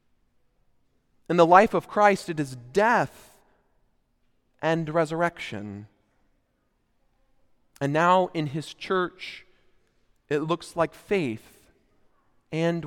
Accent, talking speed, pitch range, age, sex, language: American, 95 wpm, 125-175 Hz, 40-59, male, English